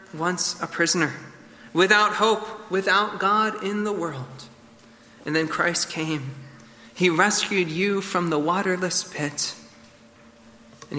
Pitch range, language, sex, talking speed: 130-175 Hz, English, male, 120 wpm